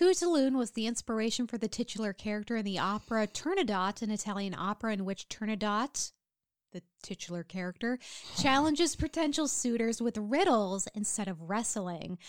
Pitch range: 190-250 Hz